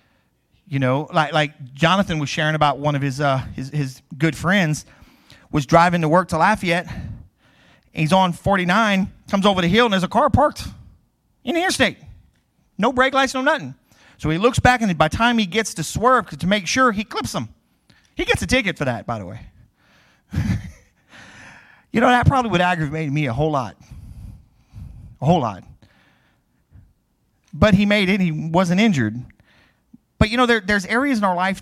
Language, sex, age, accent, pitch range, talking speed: English, male, 40-59, American, 150-225 Hz, 190 wpm